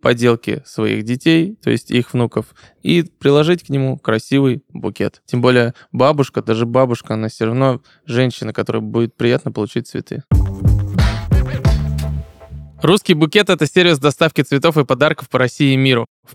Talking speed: 145 wpm